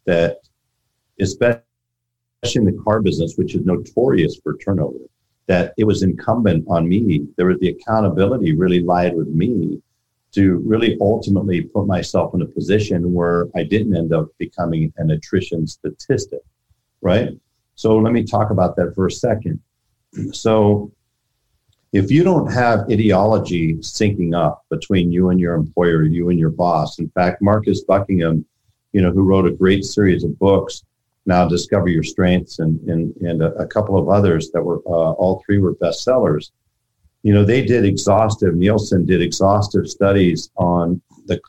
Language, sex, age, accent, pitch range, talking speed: English, male, 50-69, American, 85-110 Hz, 160 wpm